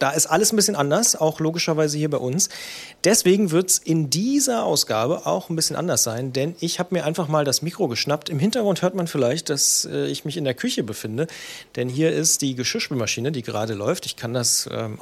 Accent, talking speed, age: German, 220 wpm, 40-59